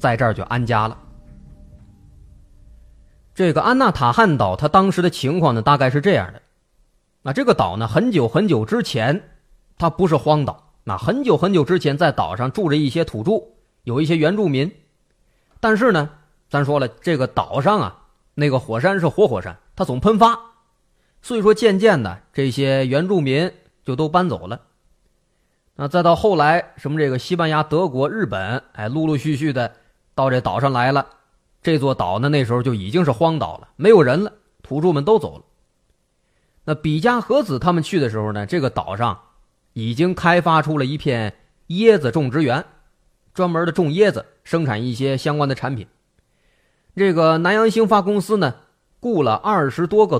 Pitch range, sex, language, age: 125-180 Hz, male, Chinese, 20-39